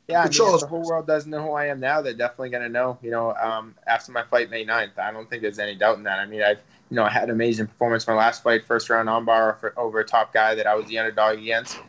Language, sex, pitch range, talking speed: English, male, 115-130 Hz, 310 wpm